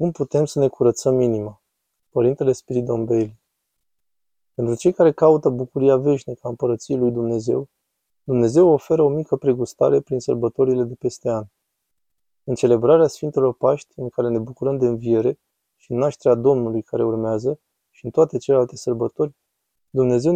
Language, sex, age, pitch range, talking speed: Romanian, male, 20-39, 120-140 Hz, 145 wpm